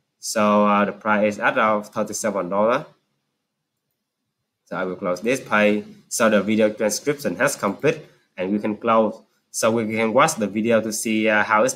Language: English